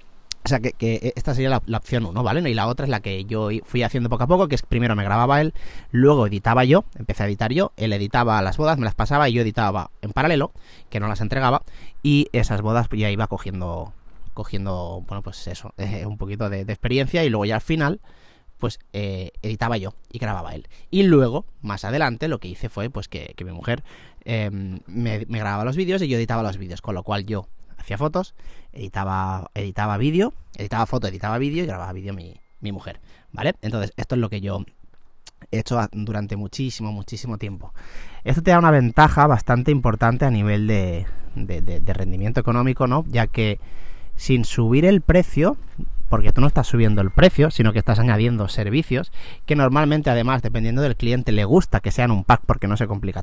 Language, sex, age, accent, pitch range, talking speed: Spanish, male, 30-49, Spanish, 100-130 Hz, 210 wpm